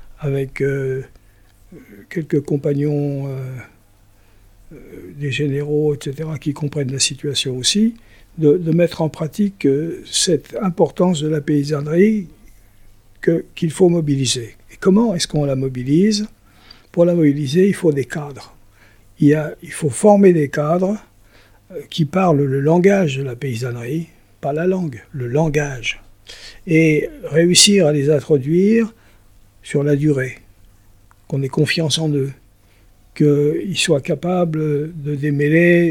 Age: 60-79